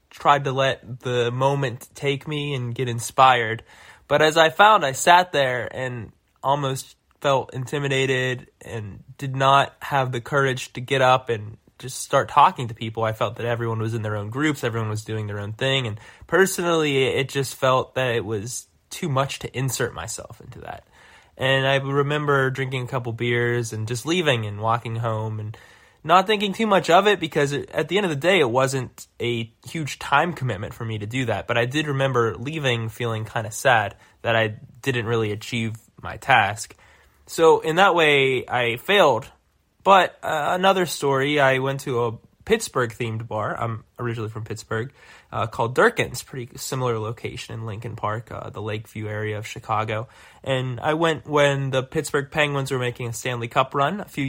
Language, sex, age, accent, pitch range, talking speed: English, male, 10-29, American, 115-140 Hz, 190 wpm